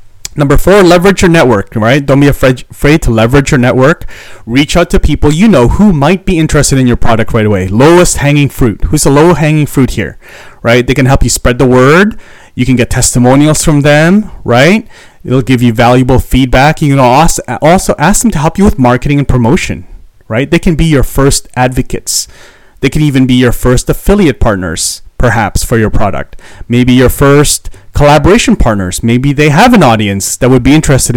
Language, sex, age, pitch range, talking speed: English, male, 30-49, 115-150 Hz, 195 wpm